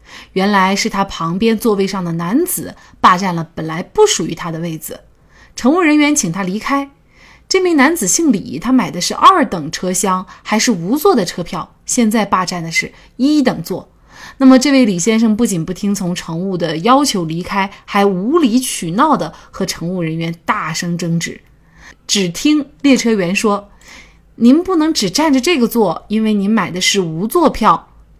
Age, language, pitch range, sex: 20-39, Chinese, 185-265 Hz, female